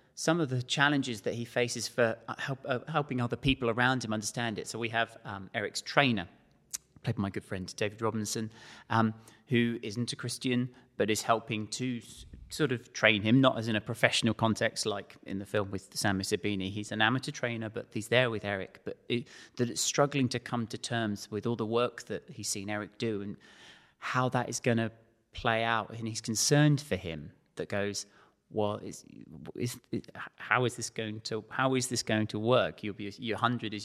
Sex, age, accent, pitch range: male, 30-49, British, 105-120 Hz